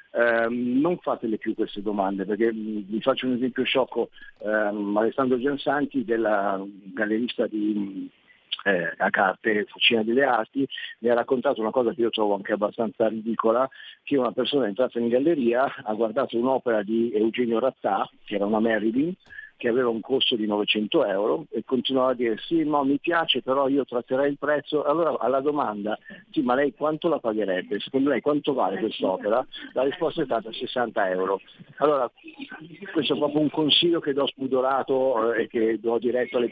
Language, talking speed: Italian, 170 wpm